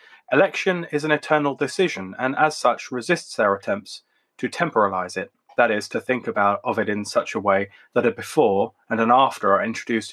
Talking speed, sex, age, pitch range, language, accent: 195 wpm, male, 20-39, 105-140 Hz, English, British